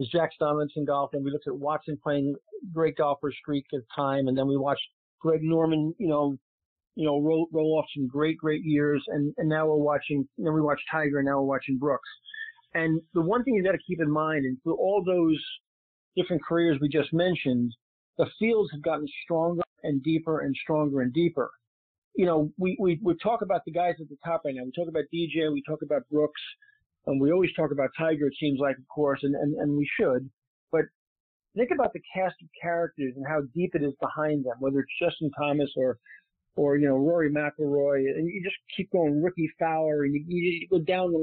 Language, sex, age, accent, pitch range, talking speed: English, male, 50-69, American, 145-175 Hz, 220 wpm